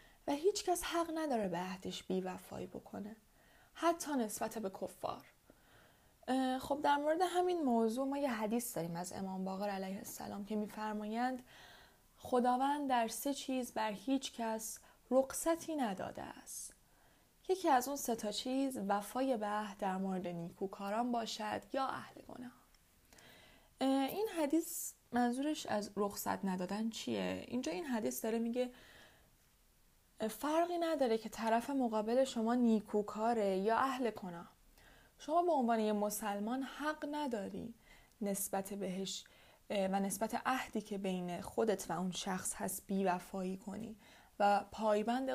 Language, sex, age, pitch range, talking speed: Persian, female, 10-29, 200-265 Hz, 135 wpm